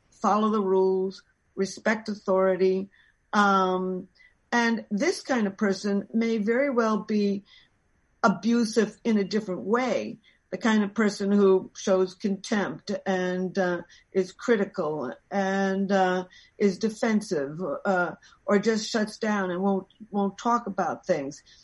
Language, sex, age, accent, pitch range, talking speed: Spanish, female, 60-79, American, 190-220 Hz, 130 wpm